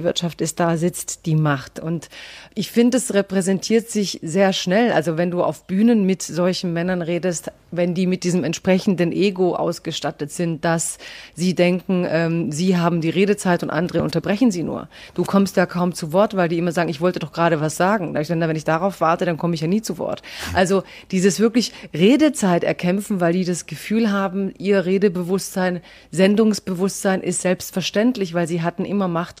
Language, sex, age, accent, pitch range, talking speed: German, female, 30-49, German, 170-195 Hz, 190 wpm